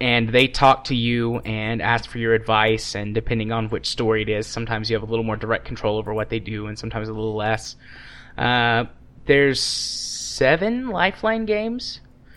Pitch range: 110-130 Hz